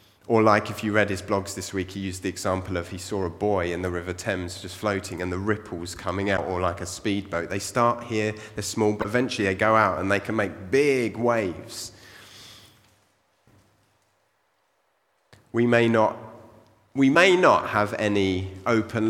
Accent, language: British, English